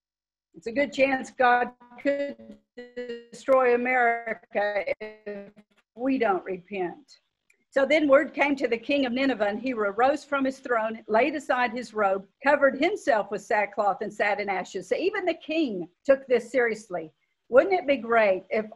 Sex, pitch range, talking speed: female, 210-275 Hz, 165 wpm